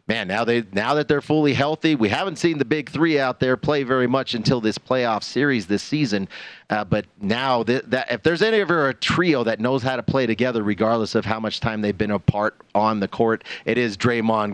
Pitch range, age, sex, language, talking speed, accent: 110-135 Hz, 40-59, male, English, 230 wpm, American